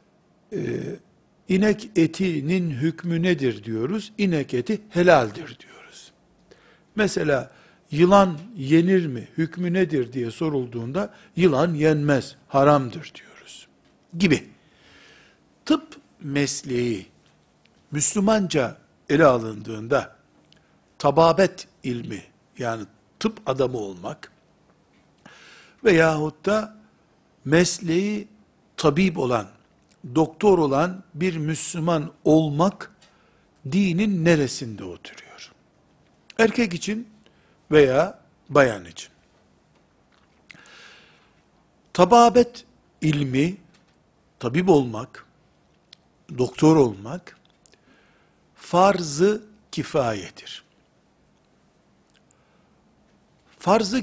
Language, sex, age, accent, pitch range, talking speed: Turkish, male, 60-79, native, 140-195 Hz, 70 wpm